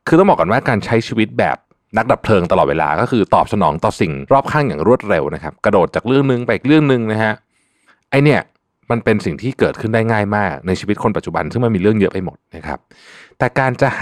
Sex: male